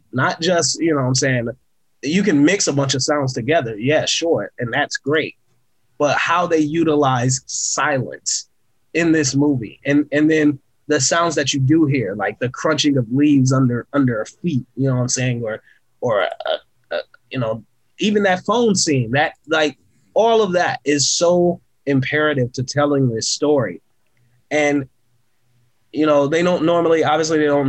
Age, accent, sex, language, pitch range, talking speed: 20-39, American, male, English, 125-155 Hz, 180 wpm